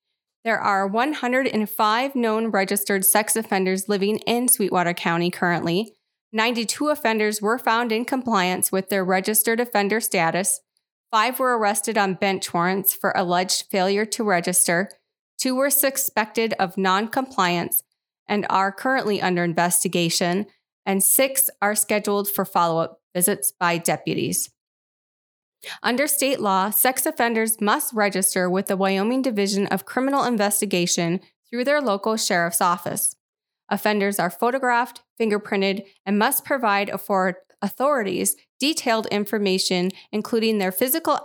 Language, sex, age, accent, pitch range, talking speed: English, female, 20-39, American, 185-230 Hz, 125 wpm